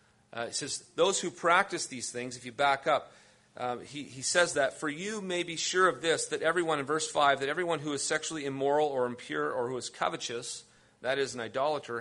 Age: 40-59